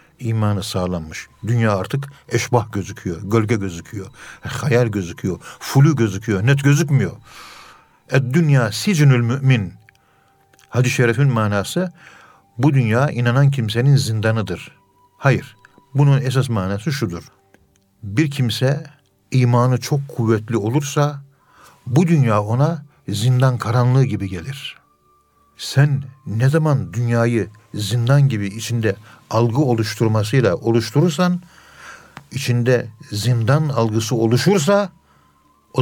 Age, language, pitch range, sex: 50-69, Turkish, 110-140 Hz, male